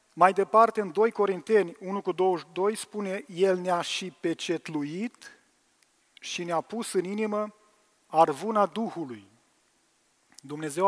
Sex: male